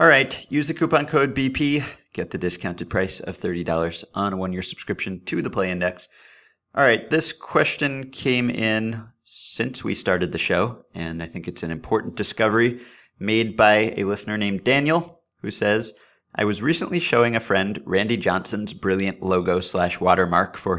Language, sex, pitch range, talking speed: English, male, 95-120 Hz, 175 wpm